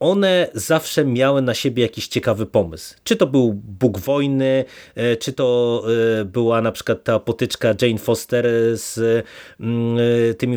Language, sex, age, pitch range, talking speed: Polish, male, 30-49, 120-150 Hz, 135 wpm